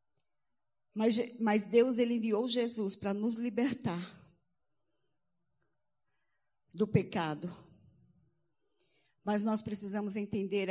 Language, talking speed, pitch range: Portuguese, 85 wpm, 200-255 Hz